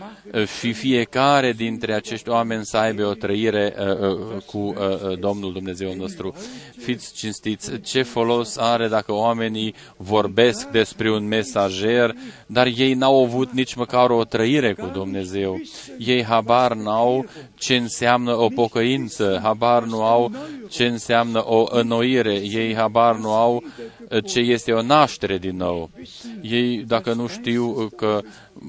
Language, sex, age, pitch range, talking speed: Romanian, male, 20-39, 105-120 Hz, 140 wpm